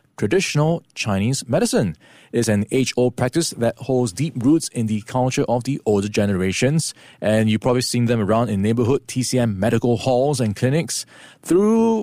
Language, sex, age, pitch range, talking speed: English, male, 20-39, 115-155 Hz, 160 wpm